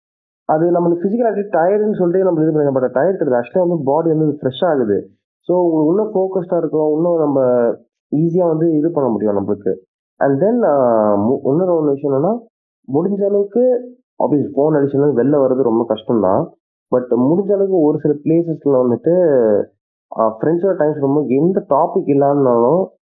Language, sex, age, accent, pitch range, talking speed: Tamil, male, 30-49, native, 115-165 Hz, 150 wpm